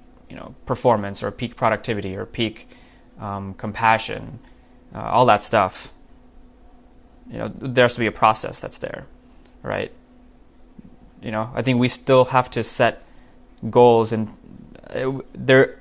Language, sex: English, male